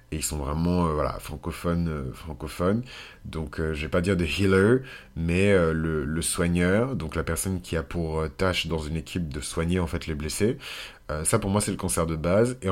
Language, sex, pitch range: French, male, 85-100 Hz